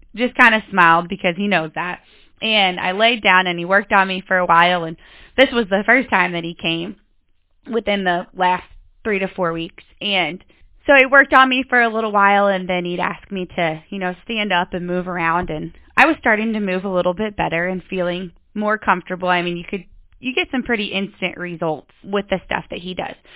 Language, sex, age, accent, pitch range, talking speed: English, female, 20-39, American, 175-225 Hz, 230 wpm